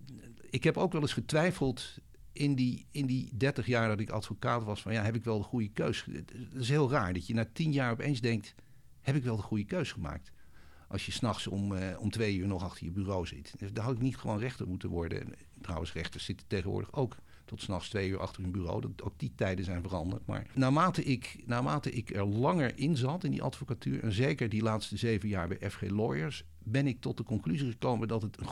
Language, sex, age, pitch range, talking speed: Dutch, male, 50-69, 100-130 Hz, 235 wpm